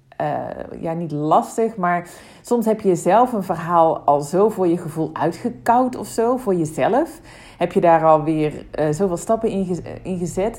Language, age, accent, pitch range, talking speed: Dutch, 40-59, Dutch, 160-200 Hz, 175 wpm